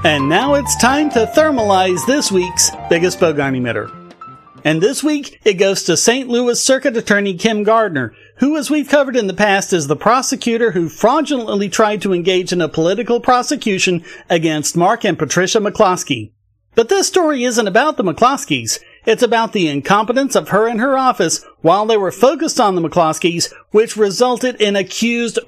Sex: male